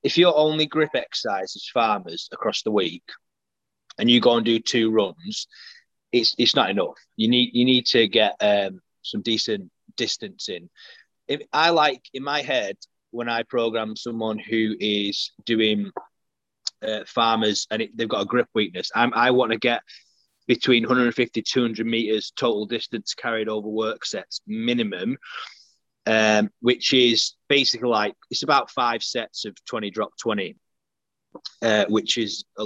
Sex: male